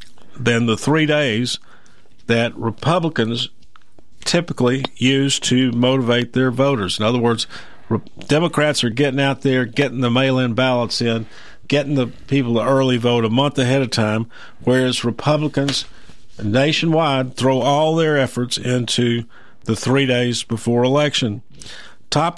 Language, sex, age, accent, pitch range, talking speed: English, male, 50-69, American, 115-140 Hz, 135 wpm